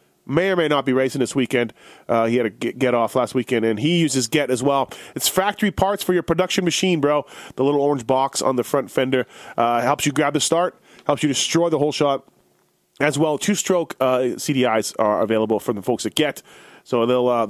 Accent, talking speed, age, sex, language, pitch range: American, 215 wpm, 30-49, male, English, 130-170 Hz